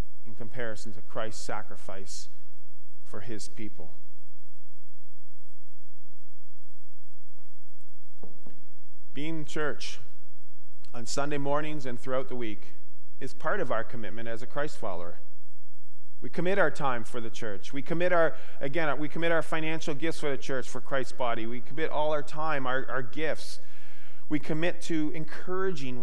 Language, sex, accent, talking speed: English, male, American, 140 wpm